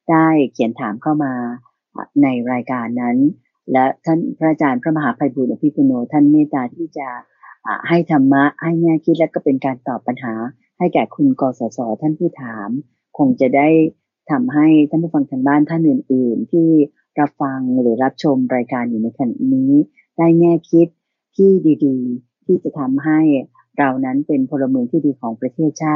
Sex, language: female, English